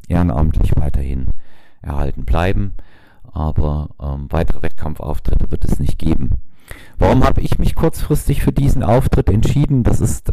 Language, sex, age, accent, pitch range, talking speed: German, male, 40-59, German, 80-95 Hz, 135 wpm